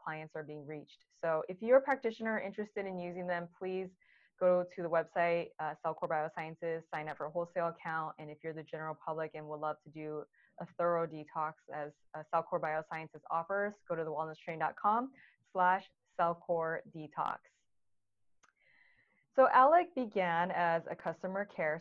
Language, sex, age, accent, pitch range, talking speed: English, female, 20-39, American, 160-185 Hz, 160 wpm